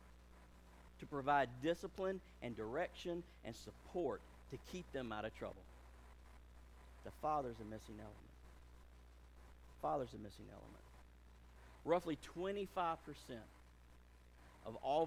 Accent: American